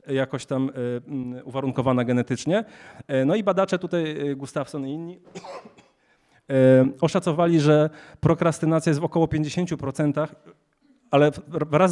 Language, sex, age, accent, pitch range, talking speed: Polish, male, 30-49, native, 130-160 Hz, 100 wpm